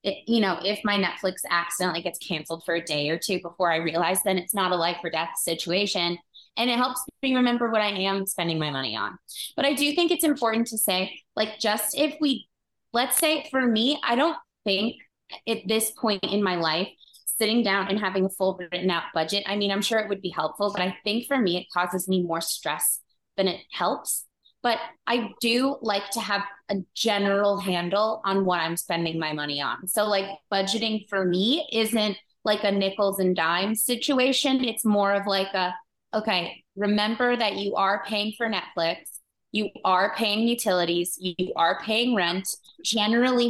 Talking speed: 195 wpm